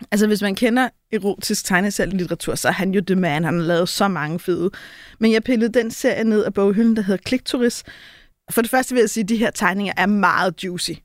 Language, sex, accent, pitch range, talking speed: Danish, female, native, 185-230 Hz, 235 wpm